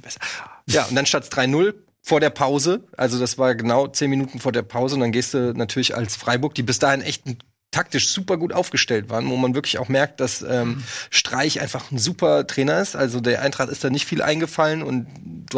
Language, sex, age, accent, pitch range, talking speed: German, male, 30-49, German, 130-150 Hz, 220 wpm